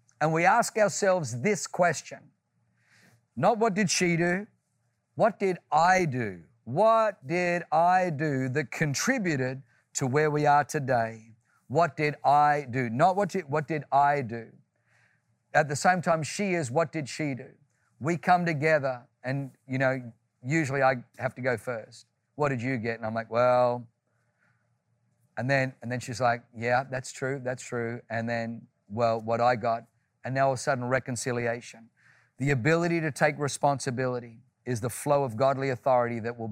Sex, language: male, English